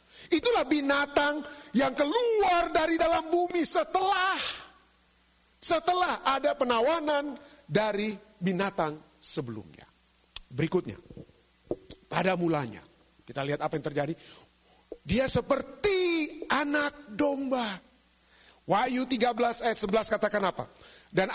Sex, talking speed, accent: male, 95 wpm, native